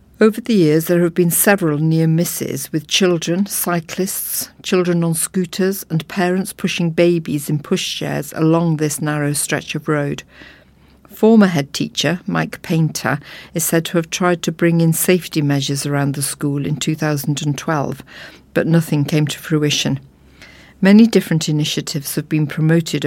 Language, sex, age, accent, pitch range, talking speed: English, female, 50-69, British, 155-180 Hz, 150 wpm